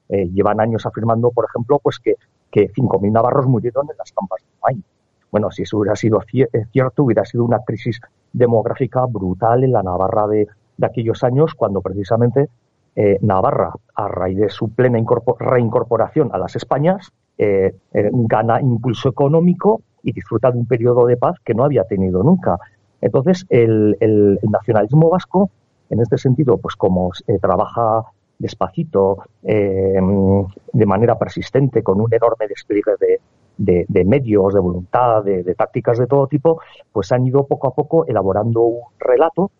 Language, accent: Spanish, Spanish